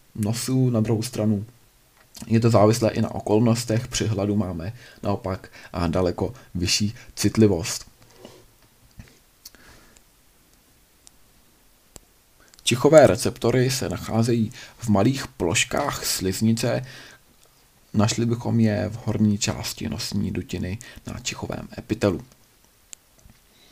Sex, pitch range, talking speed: male, 105-120 Hz, 90 wpm